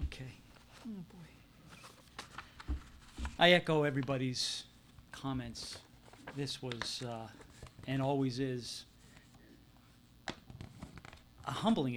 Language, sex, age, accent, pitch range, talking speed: English, male, 40-59, American, 110-135 Hz, 75 wpm